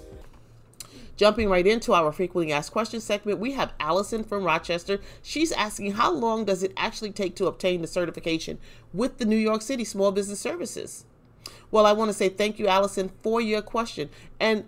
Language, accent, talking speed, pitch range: English, American, 185 wpm, 185-235 Hz